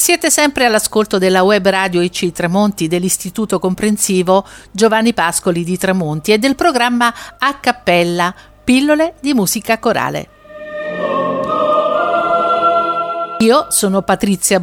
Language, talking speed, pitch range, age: Italian, 105 wpm, 180-250 Hz, 50-69